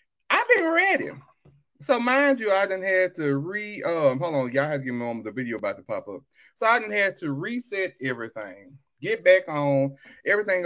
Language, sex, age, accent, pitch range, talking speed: English, male, 30-49, American, 140-230 Hz, 210 wpm